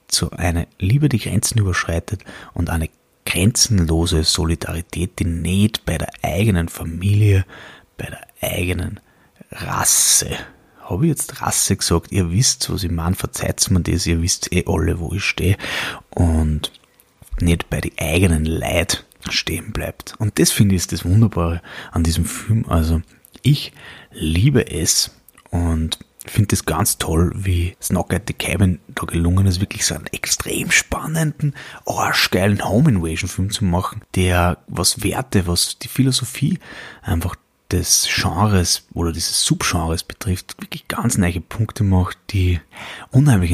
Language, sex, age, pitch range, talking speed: German, male, 30-49, 85-105 Hz, 145 wpm